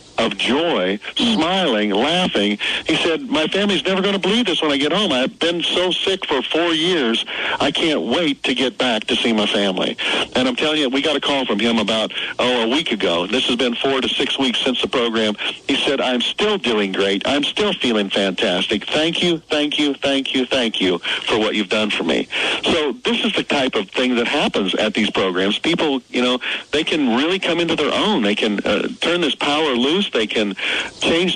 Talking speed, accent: 220 wpm, American